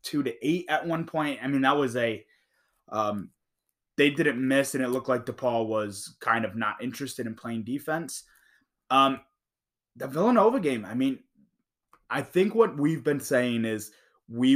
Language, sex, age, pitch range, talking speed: English, male, 20-39, 115-150 Hz, 175 wpm